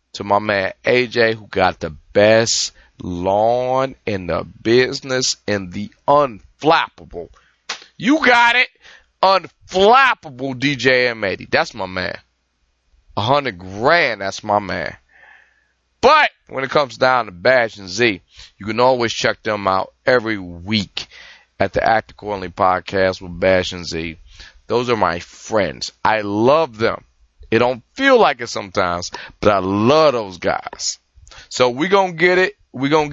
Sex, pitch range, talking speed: male, 95-140 Hz, 150 wpm